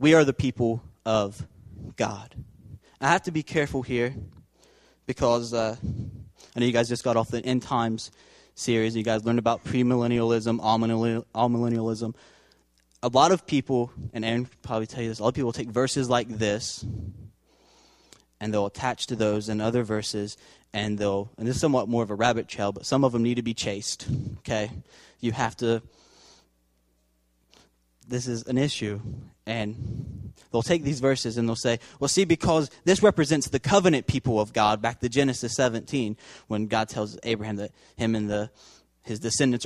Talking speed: 185 wpm